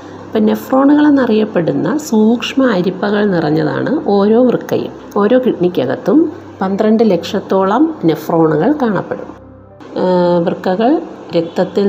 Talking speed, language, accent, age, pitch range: 80 wpm, Malayalam, native, 50-69, 180-255 Hz